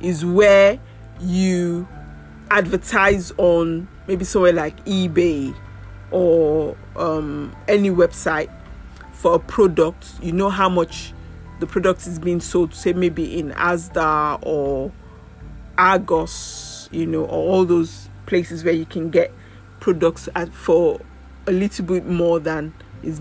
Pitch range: 140-185 Hz